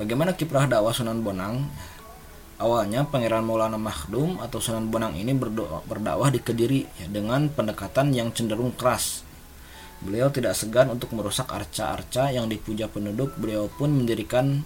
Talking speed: 140 wpm